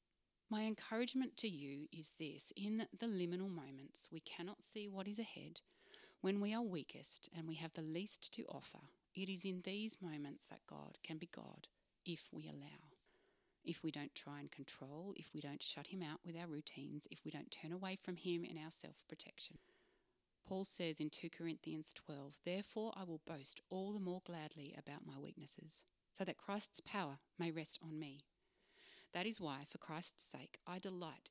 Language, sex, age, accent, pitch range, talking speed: English, female, 30-49, Australian, 155-195 Hz, 190 wpm